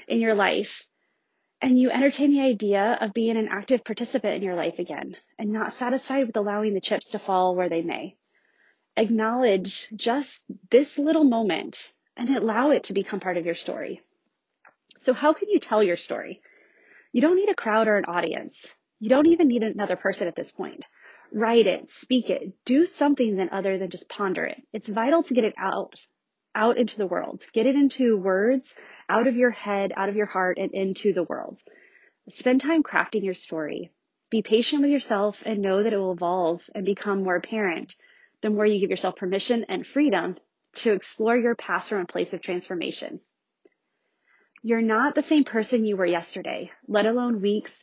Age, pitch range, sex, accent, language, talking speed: 30-49, 195-265 Hz, female, American, English, 190 wpm